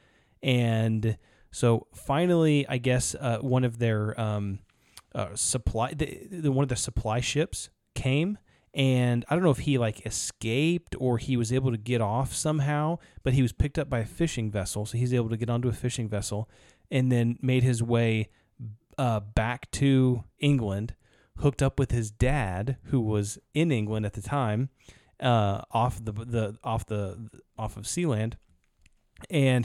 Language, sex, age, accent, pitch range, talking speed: English, male, 20-39, American, 110-135 Hz, 170 wpm